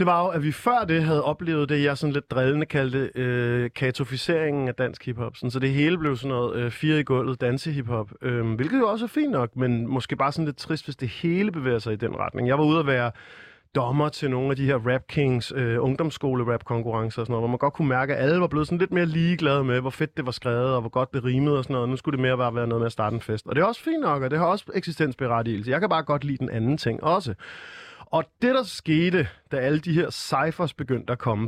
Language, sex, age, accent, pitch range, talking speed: Danish, male, 30-49, native, 125-155 Hz, 270 wpm